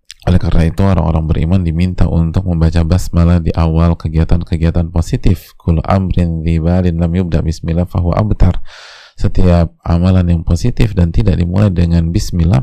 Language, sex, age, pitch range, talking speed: Indonesian, male, 20-39, 80-95 Hz, 135 wpm